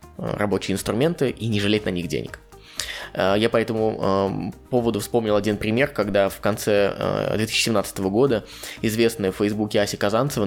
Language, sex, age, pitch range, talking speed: Russian, male, 20-39, 100-120 Hz, 145 wpm